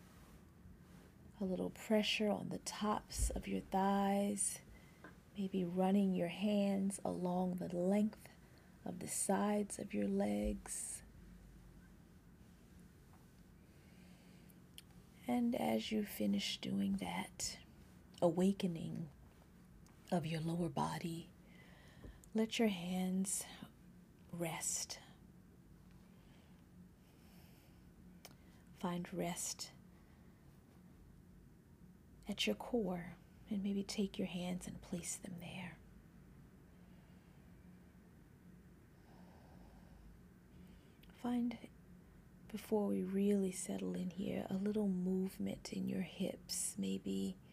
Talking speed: 80 wpm